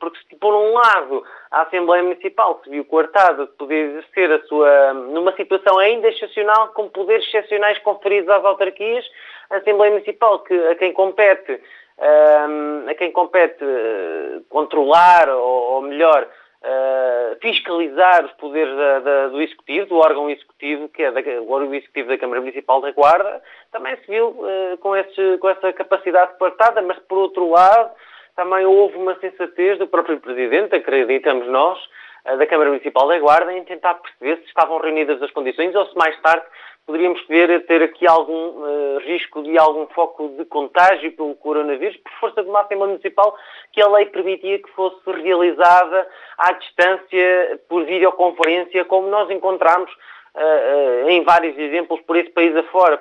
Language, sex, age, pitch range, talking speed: Portuguese, male, 30-49, 160-200 Hz, 165 wpm